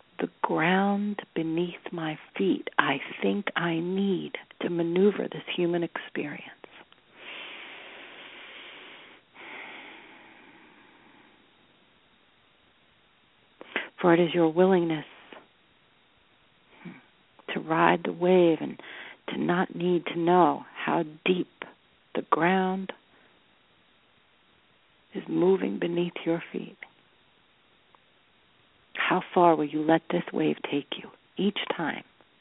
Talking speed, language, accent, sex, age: 90 wpm, English, American, female, 50-69